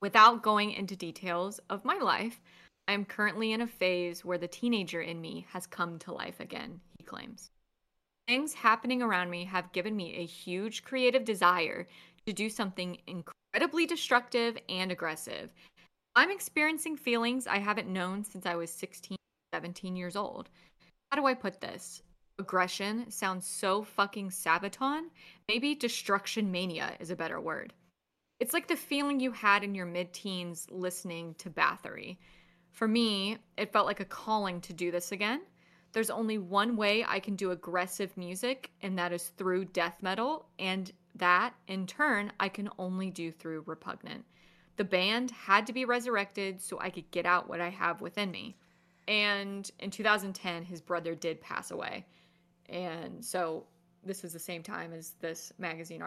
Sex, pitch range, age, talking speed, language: female, 180-220 Hz, 20-39, 165 wpm, English